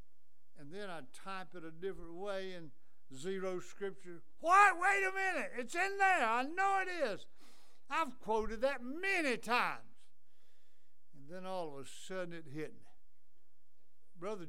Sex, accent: male, American